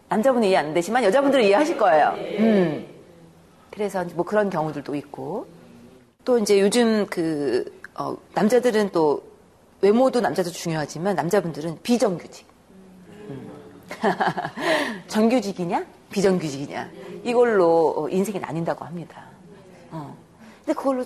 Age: 40-59